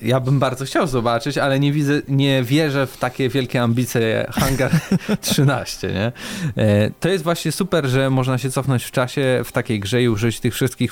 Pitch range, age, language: 110-130 Hz, 20-39, Polish